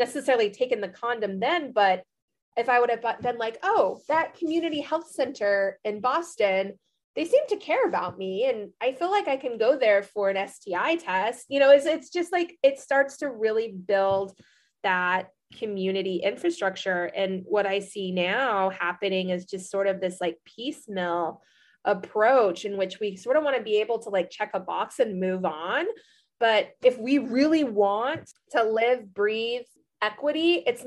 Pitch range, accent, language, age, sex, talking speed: 195-270 Hz, American, English, 20-39, female, 180 wpm